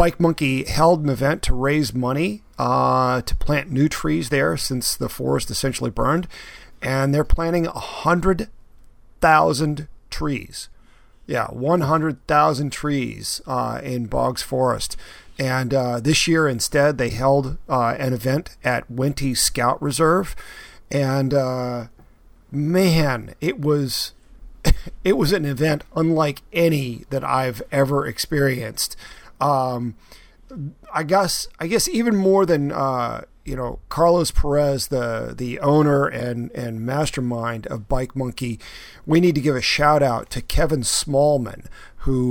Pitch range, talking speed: 125-150 Hz, 140 wpm